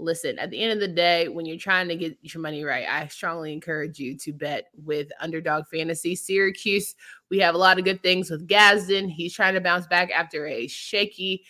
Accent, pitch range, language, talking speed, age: American, 165-205 Hz, English, 220 wpm, 20-39